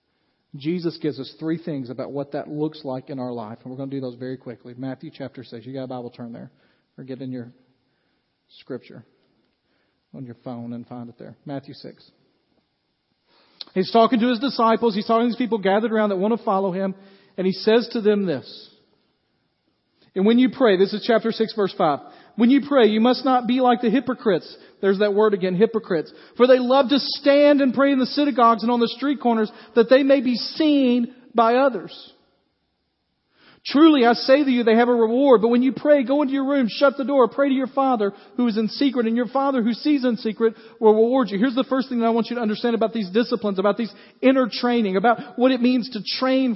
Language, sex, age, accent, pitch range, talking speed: English, male, 40-59, American, 195-255 Hz, 225 wpm